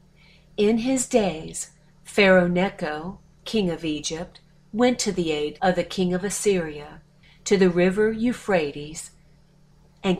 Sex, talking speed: female, 130 wpm